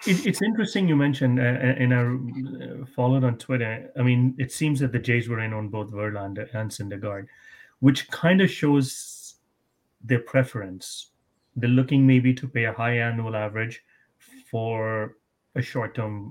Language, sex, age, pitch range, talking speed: English, male, 30-49, 110-130 Hz, 155 wpm